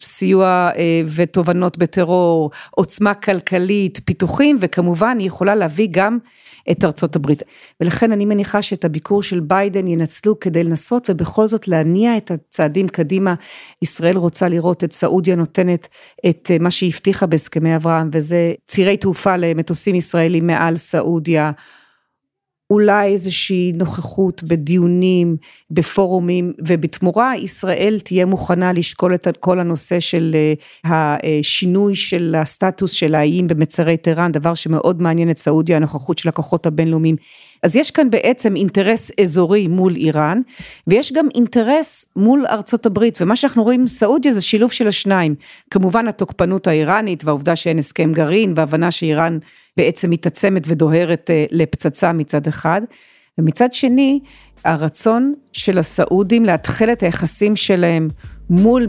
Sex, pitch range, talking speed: female, 165-200 Hz, 125 wpm